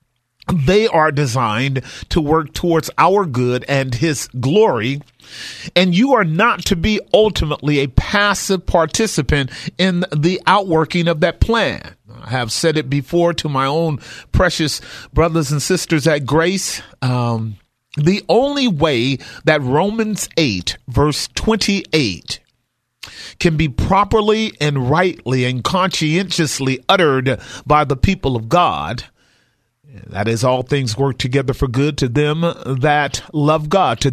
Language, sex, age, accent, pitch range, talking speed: English, male, 40-59, American, 130-185 Hz, 135 wpm